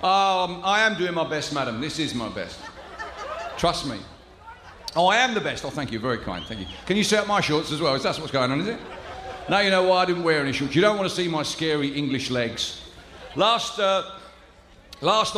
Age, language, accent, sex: 50-69, English, British, male